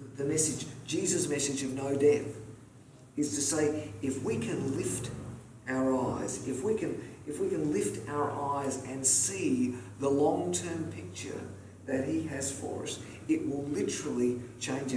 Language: English